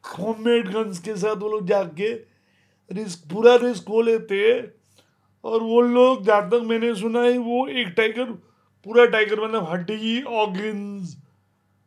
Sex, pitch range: male, 190-230 Hz